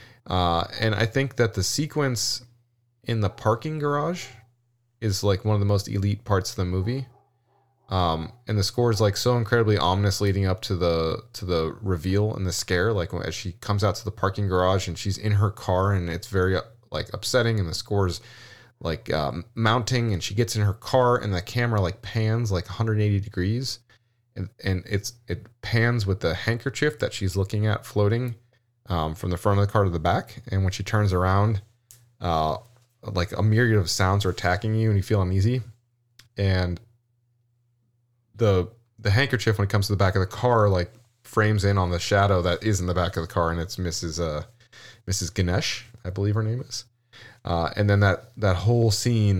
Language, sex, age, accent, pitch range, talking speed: English, male, 20-39, American, 95-120 Hz, 205 wpm